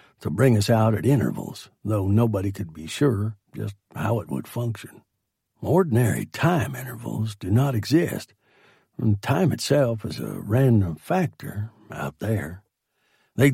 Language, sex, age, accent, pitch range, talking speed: English, male, 60-79, American, 105-125 Hz, 140 wpm